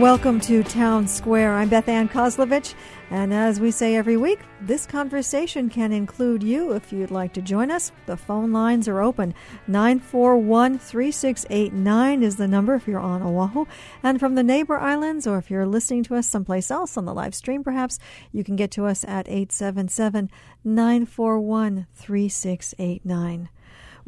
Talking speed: 155 wpm